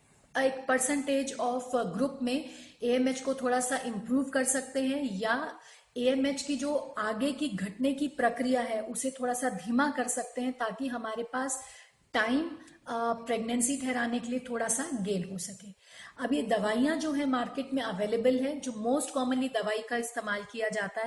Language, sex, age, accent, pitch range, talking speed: Hindi, female, 30-49, native, 225-265 Hz, 170 wpm